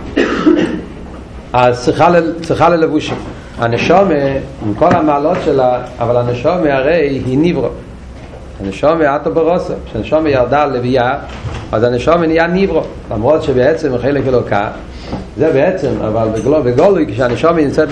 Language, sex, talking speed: Hebrew, male, 120 wpm